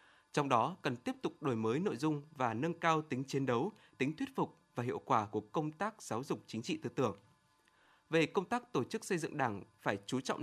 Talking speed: 235 wpm